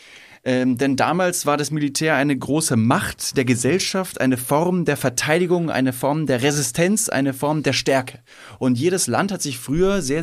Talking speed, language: 175 wpm, German